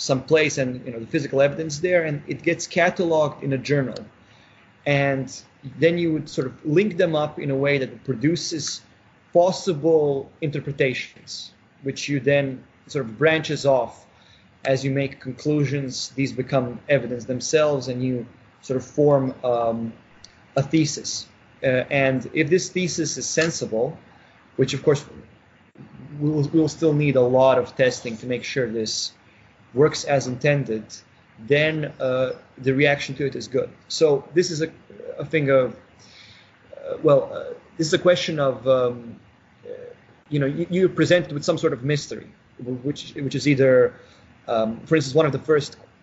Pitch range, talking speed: 125-155 Hz, 165 wpm